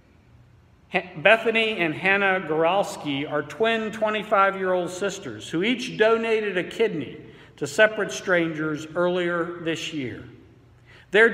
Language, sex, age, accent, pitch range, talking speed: English, male, 50-69, American, 150-190 Hz, 105 wpm